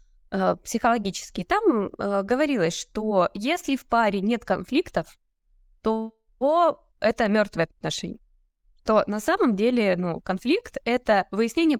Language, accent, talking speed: Russian, native, 115 wpm